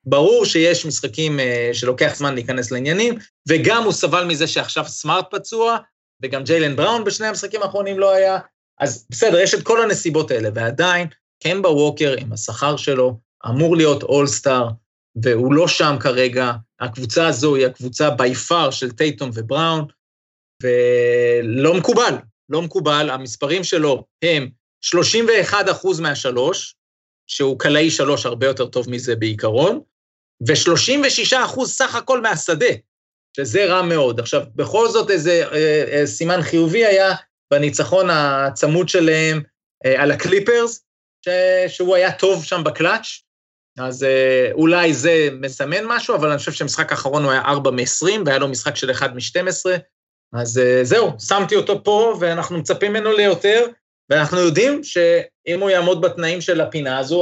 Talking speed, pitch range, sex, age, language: 145 wpm, 130-185 Hz, male, 30-49, Hebrew